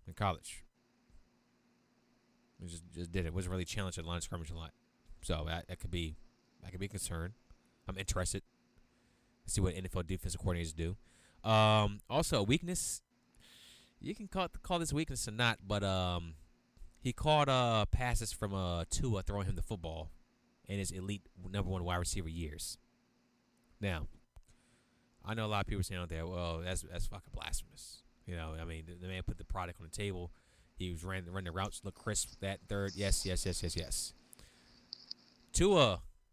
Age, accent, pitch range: 30-49, American, 85-110 Hz